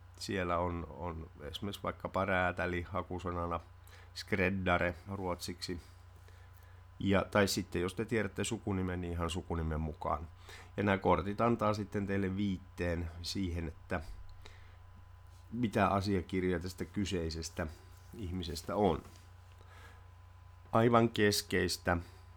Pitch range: 90-100 Hz